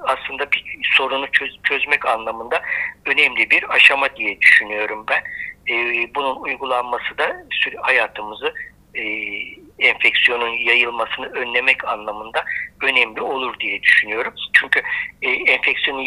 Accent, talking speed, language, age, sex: native, 115 wpm, Turkish, 60-79, male